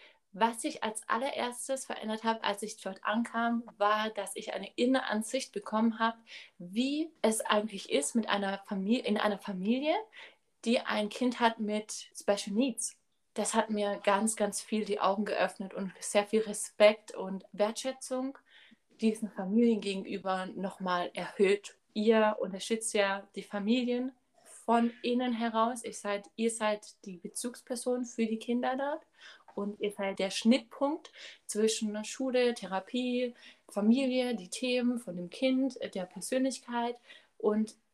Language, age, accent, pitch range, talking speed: German, 20-39, German, 200-245 Hz, 145 wpm